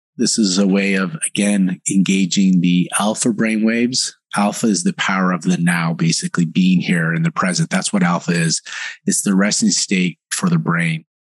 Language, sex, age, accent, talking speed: English, male, 30-49, American, 185 wpm